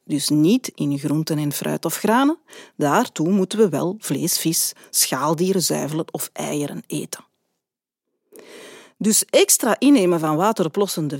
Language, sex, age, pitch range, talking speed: Dutch, female, 40-59, 160-220 Hz, 130 wpm